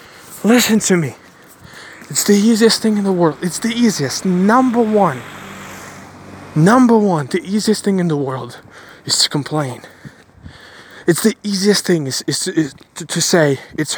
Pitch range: 150-190 Hz